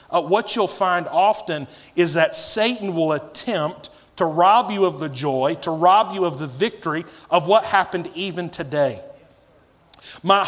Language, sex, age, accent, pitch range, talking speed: English, male, 40-59, American, 165-205 Hz, 160 wpm